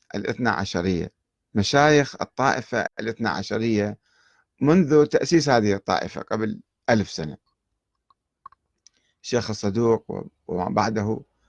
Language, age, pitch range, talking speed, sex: Arabic, 50-69, 105-140 Hz, 85 wpm, male